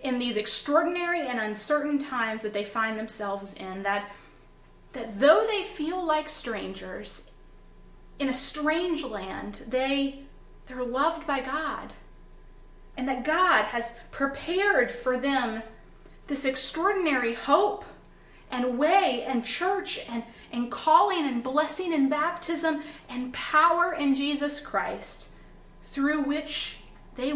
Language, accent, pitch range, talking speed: English, American, 225-285 Hz, 125 wpm